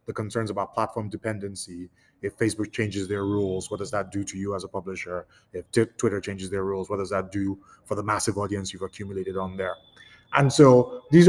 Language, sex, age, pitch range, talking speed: English, male, 20-39, 95-120 Hz, 215 wpm